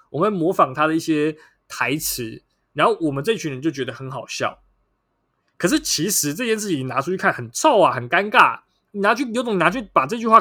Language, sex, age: Chinese, male, 20-39